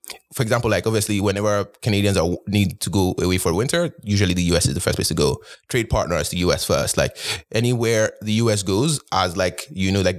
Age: 20-39